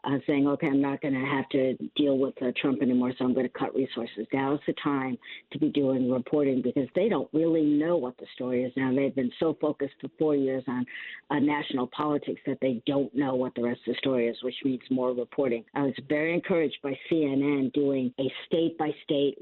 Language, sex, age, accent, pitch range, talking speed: English, female, 50-69, American, 135-155 Hz, 225 wpm